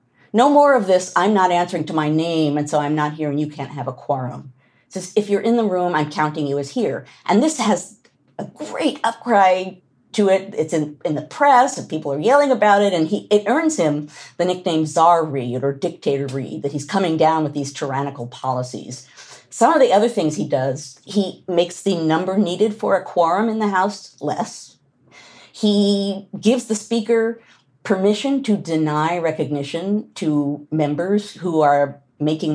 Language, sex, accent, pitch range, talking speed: English, female, American, 145-200 Hz, 190 wpm